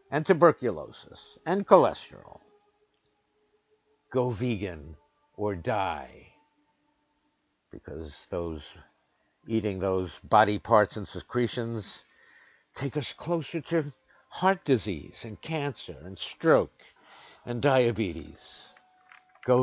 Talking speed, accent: 90 wpm, American